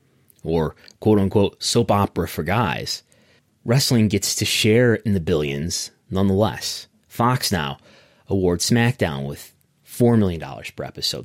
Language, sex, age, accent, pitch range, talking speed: English, male, 30-49, American, 85-115 Hz, 125 wpm